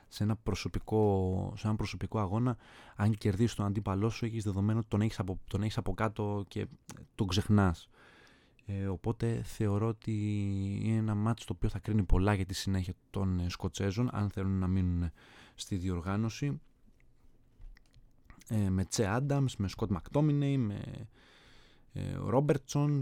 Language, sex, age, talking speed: Greek, male, 20-39, 150 wpm